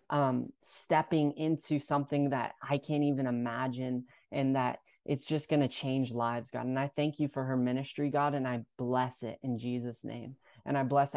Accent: American